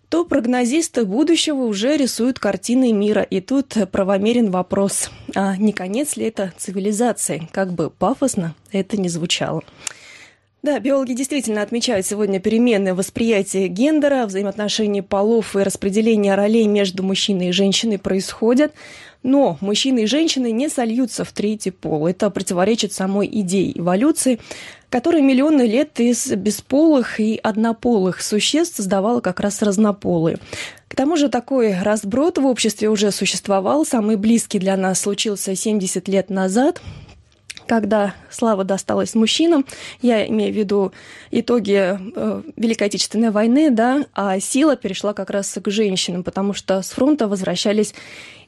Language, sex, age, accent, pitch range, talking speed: Russian, female, 20-39, native, 200-245 Hz, 135 wpm